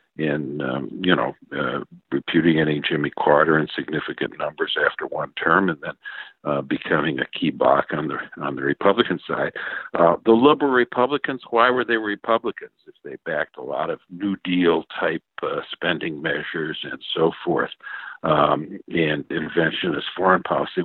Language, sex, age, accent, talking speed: English, male, 60-79, American, 165 wpm